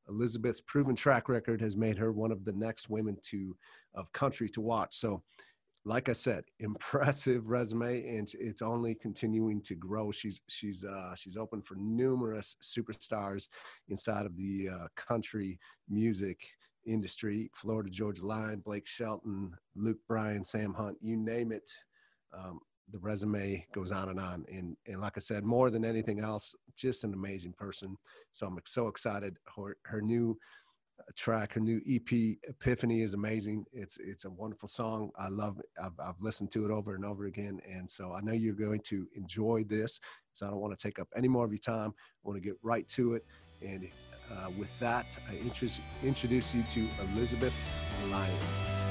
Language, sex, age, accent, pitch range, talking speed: English, male, 40-59, American, 100-115 Hz, 180 wpm